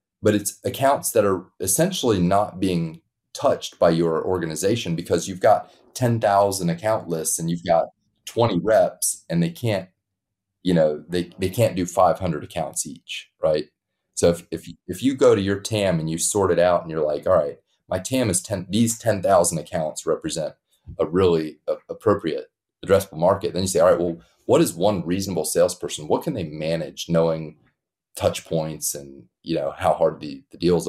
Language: English